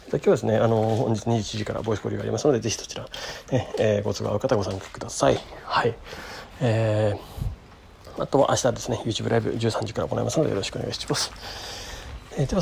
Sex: male